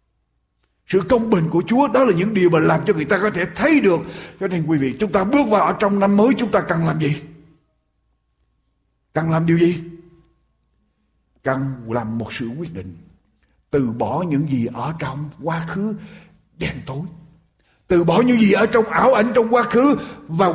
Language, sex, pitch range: Japanese, male, 160-245 Hz